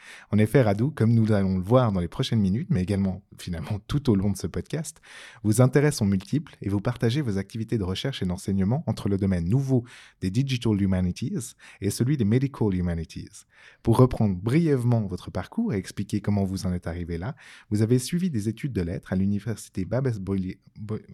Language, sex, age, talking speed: French, male, 20-39, 195 wpm